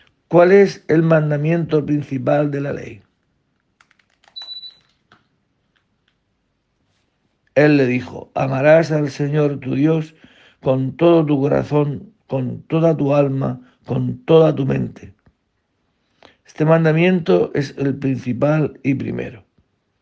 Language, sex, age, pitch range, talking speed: Spanish, male, 60-79, 130-155 Hz, 105 wpm